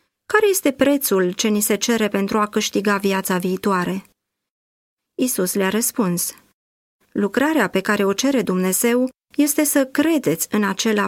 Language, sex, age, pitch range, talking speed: Romanian, female, 30-49, 190-265 Hz, 140 wpm